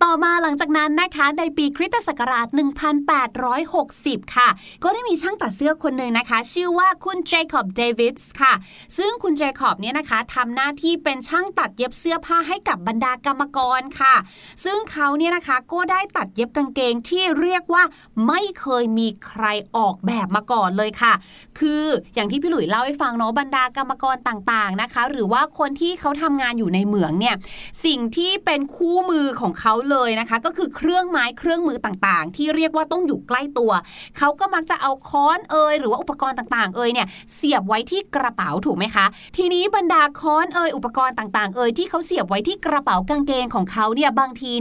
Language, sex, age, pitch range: Thai, female, 20-39, 240-335 Hz